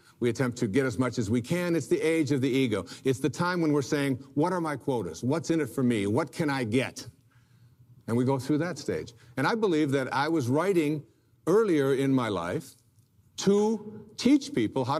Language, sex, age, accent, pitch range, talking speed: English, male, 60-79, American, 120-155 Hz, 220 wpm